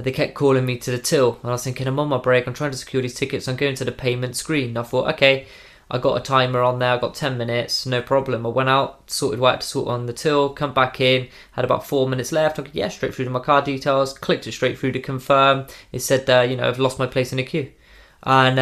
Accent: British